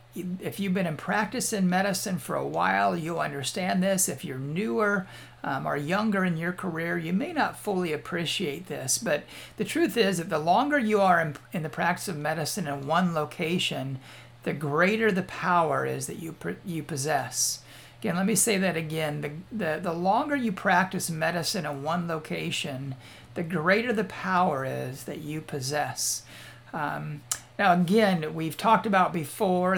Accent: American